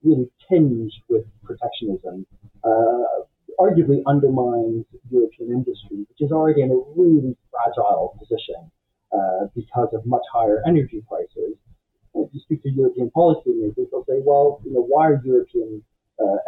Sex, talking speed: male, 145 wpm